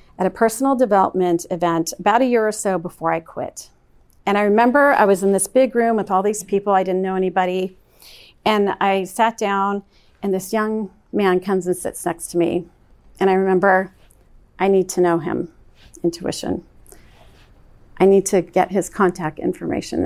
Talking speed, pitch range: 180 wpm, 180-220 Hz